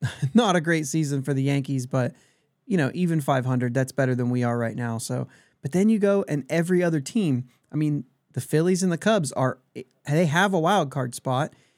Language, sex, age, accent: English, male, 30-49, American